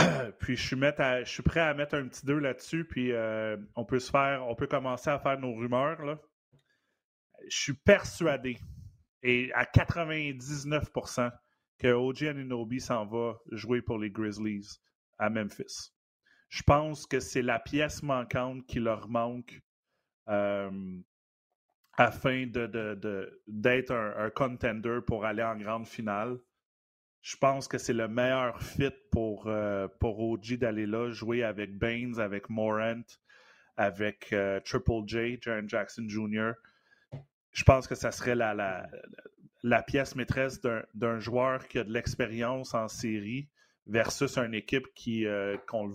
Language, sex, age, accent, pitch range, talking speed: French, male, 30-49, Canadian, 110-135 Hz, 140 wpm